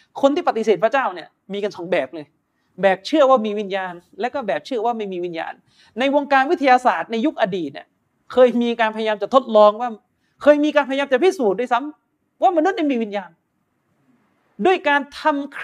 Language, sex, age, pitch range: Thai, male, 30-49, 210-285 Hz